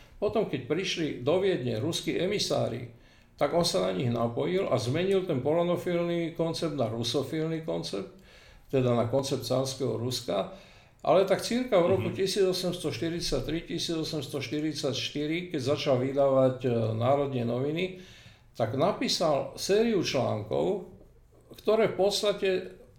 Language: Slovak